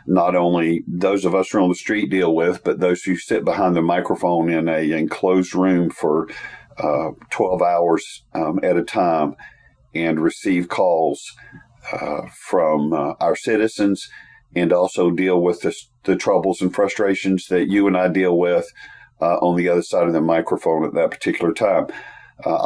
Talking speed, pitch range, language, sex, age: 175 wpm, 90-110 Hz, English, male, 50-69